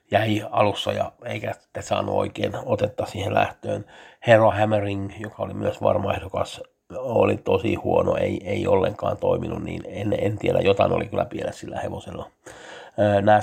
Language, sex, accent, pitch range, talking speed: Finnish, male, native, 100-110 Hz, 155 wpm